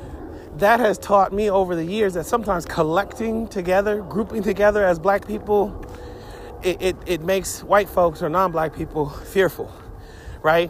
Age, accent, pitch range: 30-49, American, 155-215 Hz